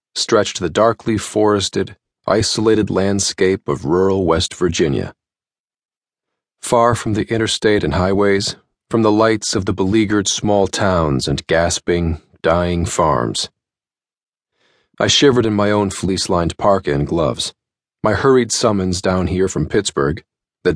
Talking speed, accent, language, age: 130 wpm, American, English, 40-59